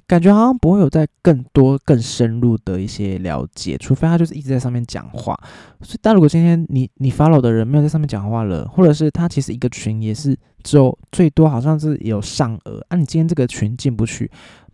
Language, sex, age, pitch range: Chinese, male, 20-39, 110-145 Hz